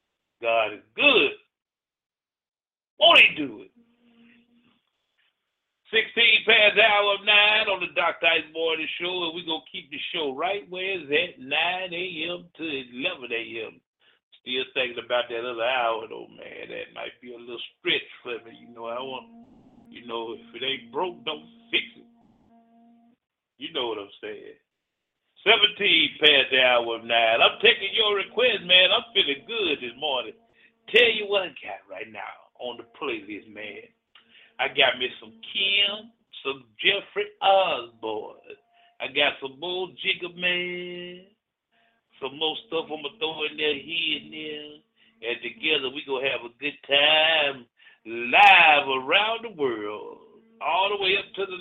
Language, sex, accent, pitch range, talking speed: English, male, American, 155-245 Hz, 155 wpm